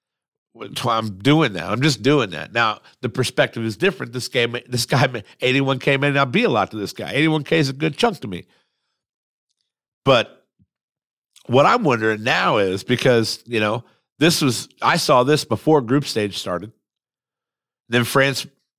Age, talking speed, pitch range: 50-69, 170 wpm, 110-140 Hz